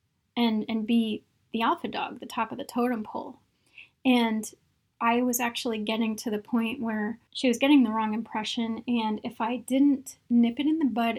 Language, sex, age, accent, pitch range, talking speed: English, female, 30-49, American, 220-250 Hz, 195 wpm